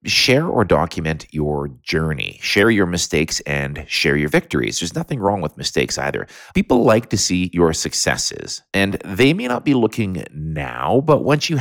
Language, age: English, 30-49